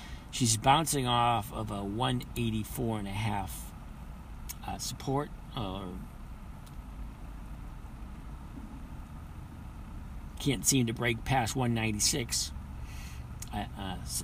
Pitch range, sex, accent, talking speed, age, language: 95-125 Hz, male, American, 65 wpm, 50-69, English